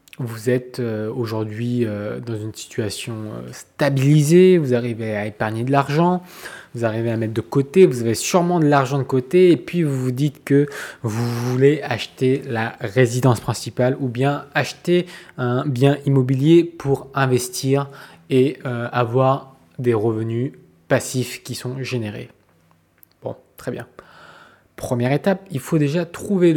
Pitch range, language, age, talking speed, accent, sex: 120-150 Hz, French, 20-39, 140 wpm, French, male